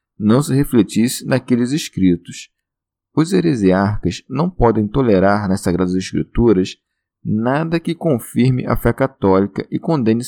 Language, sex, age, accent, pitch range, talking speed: Portuguese, male, 40-59, Brazilian, 95-130 Hz, 125 wpm